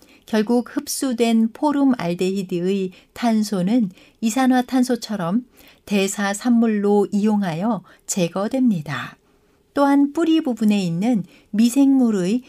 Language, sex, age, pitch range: Korean, female, 60-79, 185-245 Hz